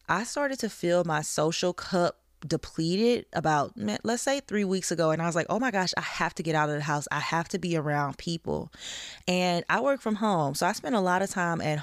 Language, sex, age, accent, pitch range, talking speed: English, female, 20-39, American, 160-205 Hz, 245 wpm